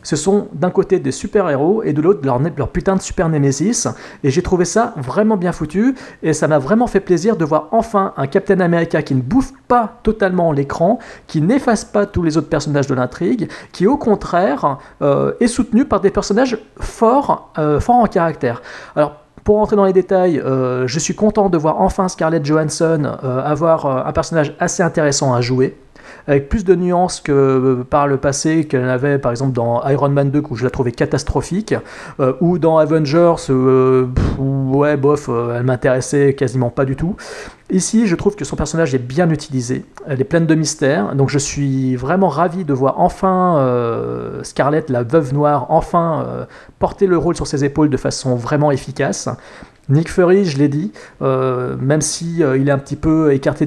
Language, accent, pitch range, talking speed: French, French, 140-185 Hz, 195 wpm